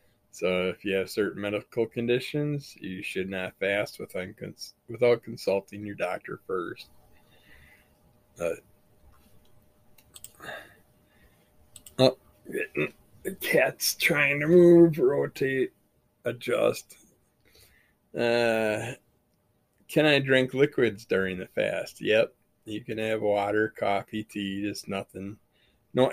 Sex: male